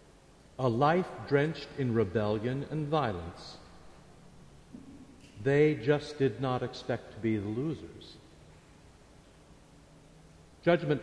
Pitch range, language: 120-160 Hz, English